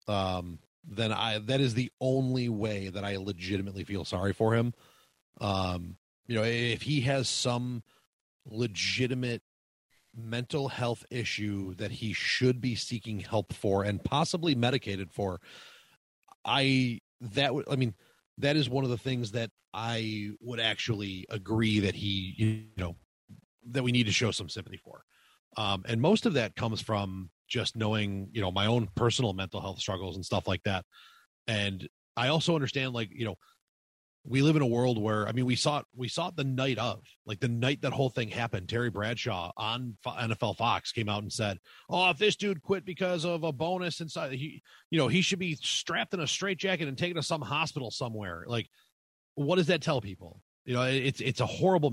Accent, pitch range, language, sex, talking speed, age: American, 105-135 Hz, English, male, 185 wpm, 30-49